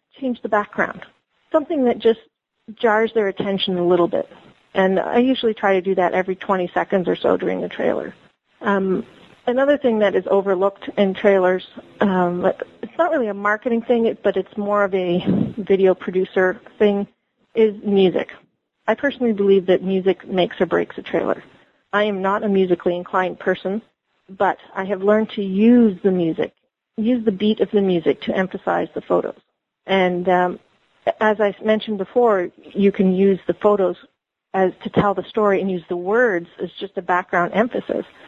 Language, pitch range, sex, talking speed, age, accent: English, 190-225 Hz, female, 175 wpm, 40-59, American